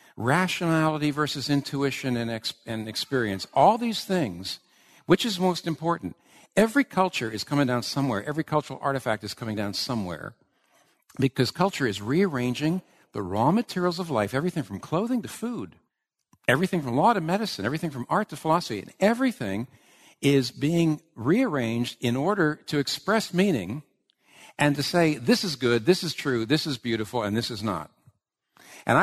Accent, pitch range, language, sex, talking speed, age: American, 110-155 Hz, English, male, 160 wpm, 60-79